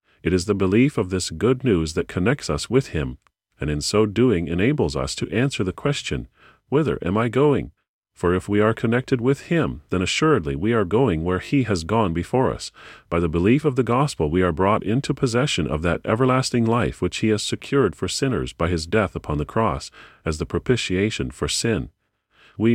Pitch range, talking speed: 90-130 Hz, 205 wpm